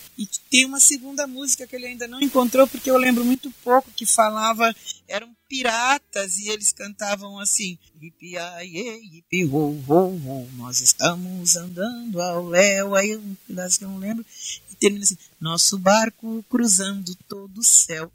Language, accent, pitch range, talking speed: Portuguese, Brazilian, 180-235 Hz, 145 wpm